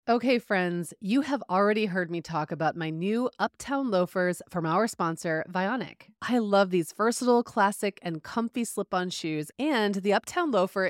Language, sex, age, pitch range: English, female, 30-49, 170-230 Hz